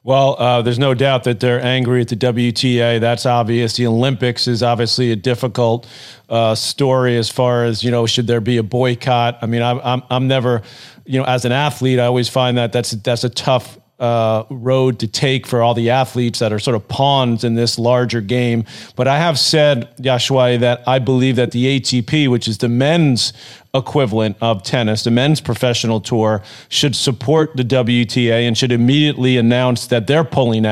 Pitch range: 120-130 Hz